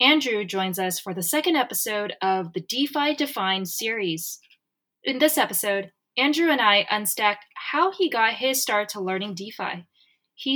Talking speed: 160 wpm